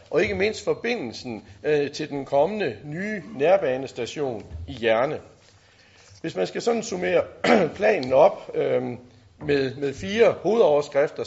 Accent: native